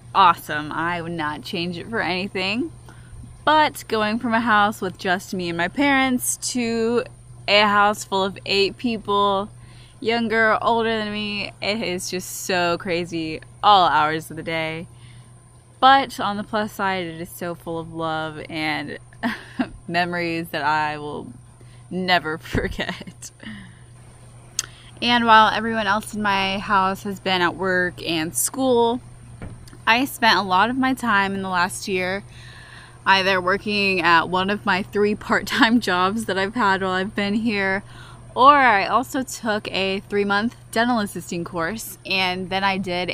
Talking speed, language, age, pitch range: 155 wpm, English, 20-39, 160-215 Hz